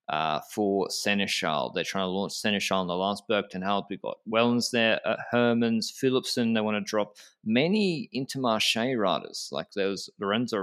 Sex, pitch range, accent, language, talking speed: male, 100-130 Hz, Australian, English, 170 wpm